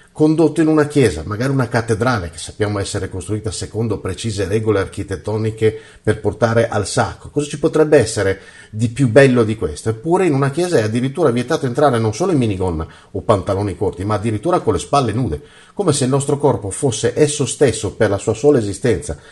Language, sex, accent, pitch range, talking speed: Italian, male, native, 105-150 Hz, 195 wpm